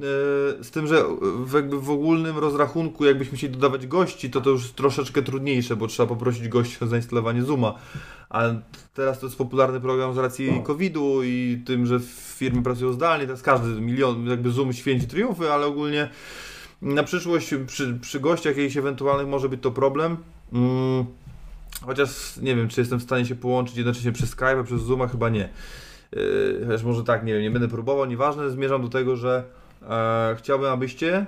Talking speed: 175 wpm